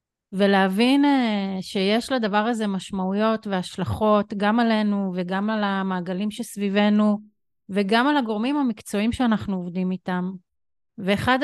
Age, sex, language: 30-49, female, Hebrew